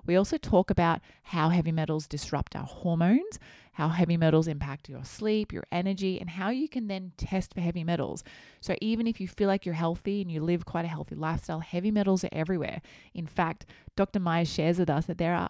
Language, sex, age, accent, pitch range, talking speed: English, female, 20-39, Australian, 155-185 Hz, 215 wpm